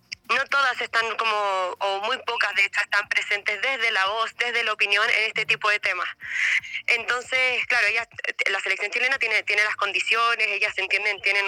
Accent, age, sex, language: Argentinian, 20-39, female, Spanish